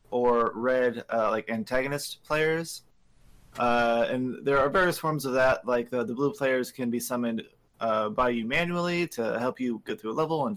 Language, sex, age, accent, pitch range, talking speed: English, male, 20-39, American, 120-150 Hz, 195 wpm